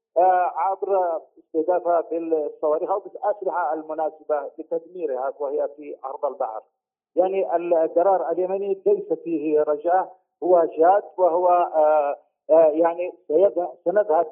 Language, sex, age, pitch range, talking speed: Arabic, male, 50-69, 155-195 Hz, 90 wpm